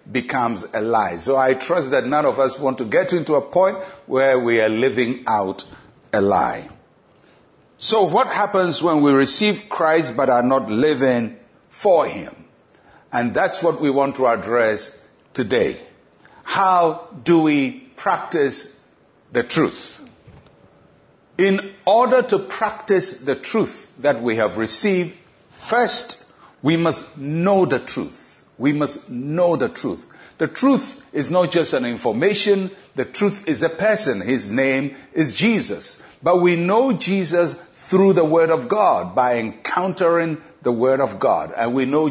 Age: 60-79